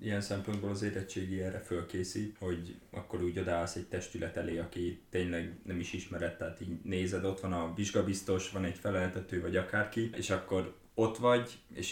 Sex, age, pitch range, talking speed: male, 20-39, 90-110 Hz, 175 wpm